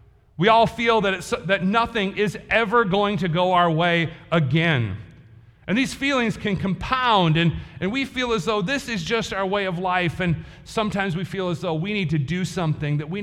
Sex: male